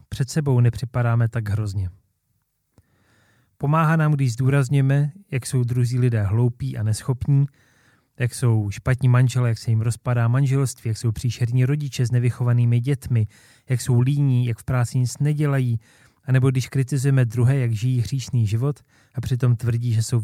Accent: native